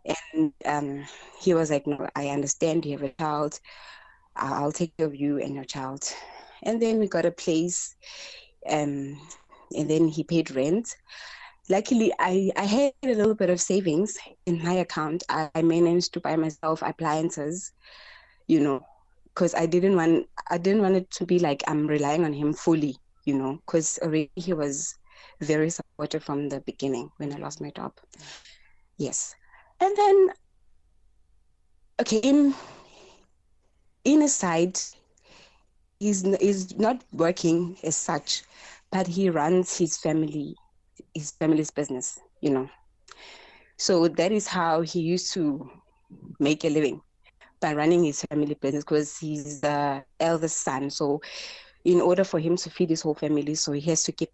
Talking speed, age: 155 wpm, 20-39